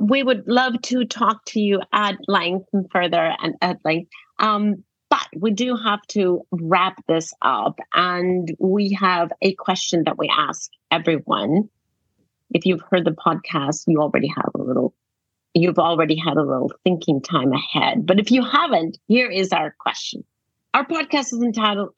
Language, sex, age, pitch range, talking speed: English, female, 40-59, 155-210 Hz, 170 wpm